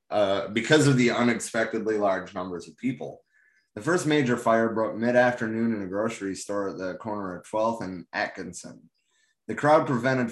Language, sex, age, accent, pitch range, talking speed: English, male, 30-49, American, 100-125 Hz, 170 wpm